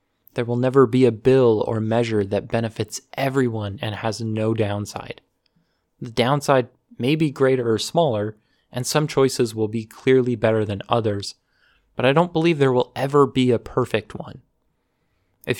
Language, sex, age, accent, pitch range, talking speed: English, male, 20-39, American, 110-135 Hz, 165 wpm